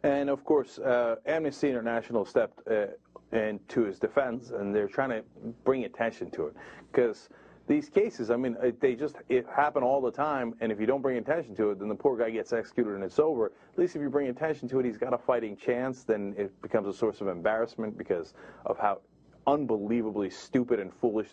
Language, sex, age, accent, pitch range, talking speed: English, male, 30-49, American, 115-155 Hz, 215 wpm